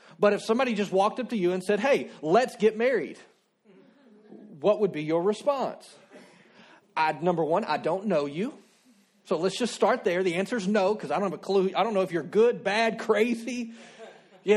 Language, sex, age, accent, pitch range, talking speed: English, male, 40-59, American, 185-220 Hz, 205 wpm